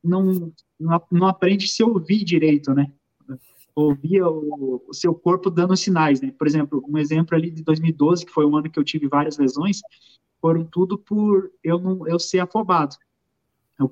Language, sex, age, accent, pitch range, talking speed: Portuguese, male, 20-39, Brazilian, 155-190 Hz, 180 wpm